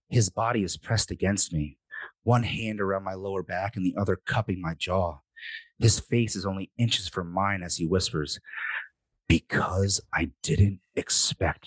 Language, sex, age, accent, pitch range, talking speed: English, male, 30-49, American, 95-115 Hz, 165 wpm